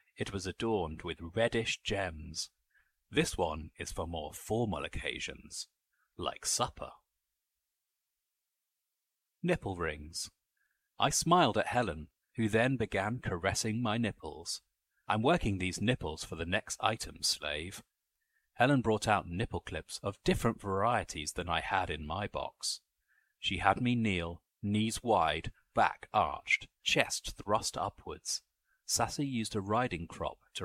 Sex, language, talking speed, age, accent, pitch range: male, English, 130 wpm, 30-49, British, 90-115 Hz